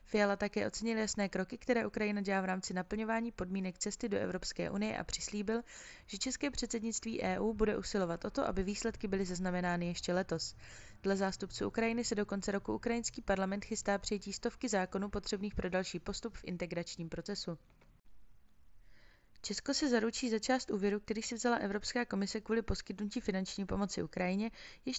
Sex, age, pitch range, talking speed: female, 20-39, 190-230 Hz, 165 wpm